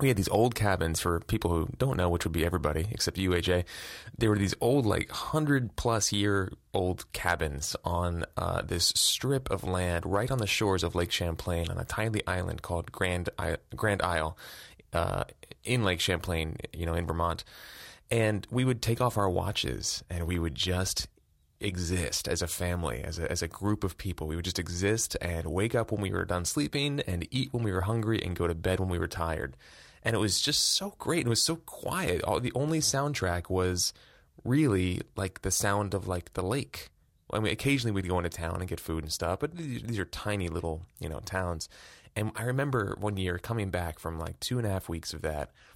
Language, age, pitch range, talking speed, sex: English, 20-39, 85-105 Hz, 210 wpm, male